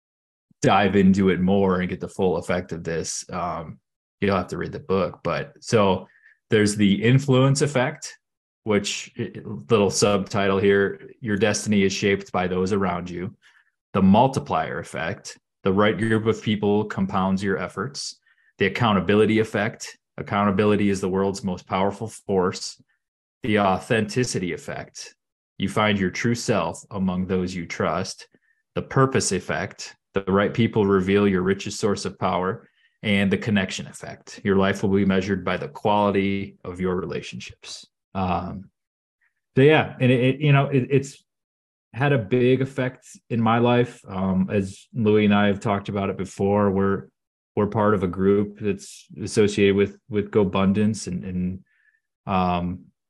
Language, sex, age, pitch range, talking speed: English, male, 20-39, 95-110 Hz, 155 wpm